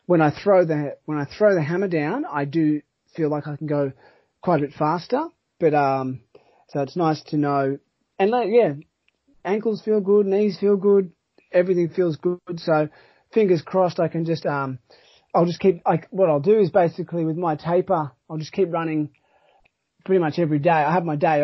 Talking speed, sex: 200 wpm, male